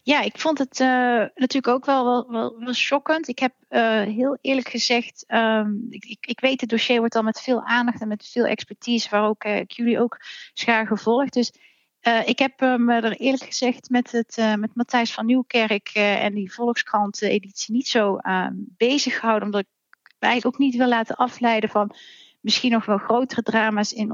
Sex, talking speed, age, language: female, 200 wpm, 30-49, Dutch